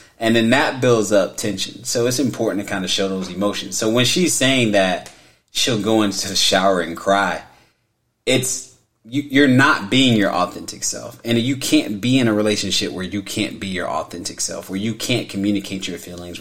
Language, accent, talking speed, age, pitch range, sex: English, American, 200 wpm, 30-49, 100-120 Hz, male